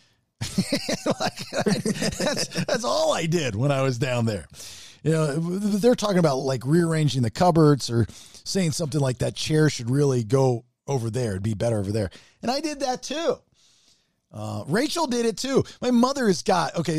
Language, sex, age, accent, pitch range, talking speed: English, male, 40-59, American, 135-200 Hz, 185 wpm